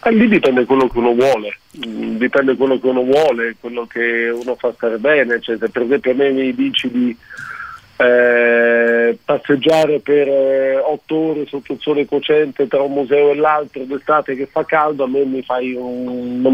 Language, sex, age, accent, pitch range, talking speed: Italian, male, 40-59, native, 130-155 Hz, 190 wpm